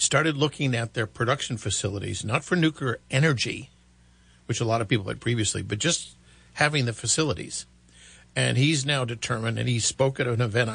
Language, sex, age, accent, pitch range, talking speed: English, male, 50-69, American, 100-130 Hz, 180 wpm